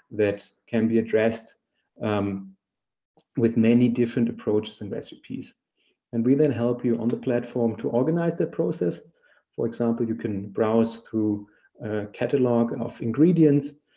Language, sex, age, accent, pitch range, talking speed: English, male, 40-59, German, 110-125 Hz, 140 wpm